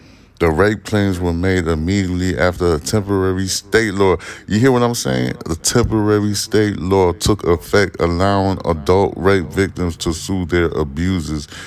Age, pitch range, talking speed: 20-39, 85-100 Hz, 155 wpm